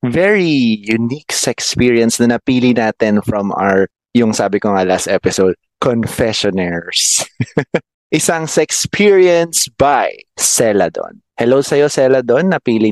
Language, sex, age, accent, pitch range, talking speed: Filipino, male, 20-39, native, 120-170 Hz, 115 wpm